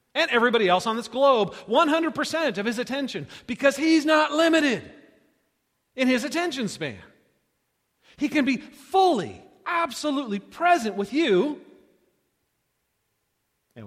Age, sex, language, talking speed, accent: 40-59, male, English, 115 wpm, American